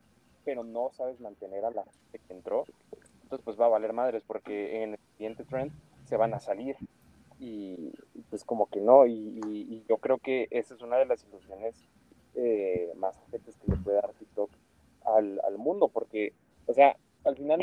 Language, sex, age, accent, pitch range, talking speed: Spanish, male, 20-39, Mexican, 100-125 Hz, 195 wpm